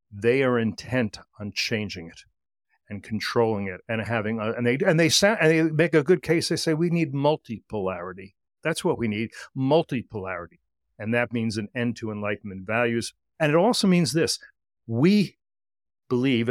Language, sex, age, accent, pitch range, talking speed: English, male, 60-79, American, 105-130 Hz, 170 wpm